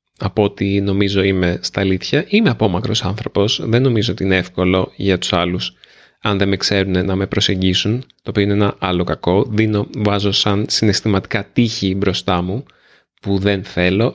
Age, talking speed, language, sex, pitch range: 30-49, 175 wpm, Greek, male, 95-110 Hz